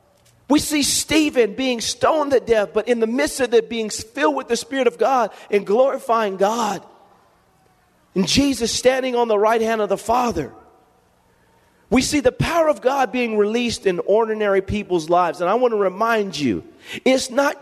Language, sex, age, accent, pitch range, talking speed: English, male, 40-59, American, 185-260 Hz, 180 wpm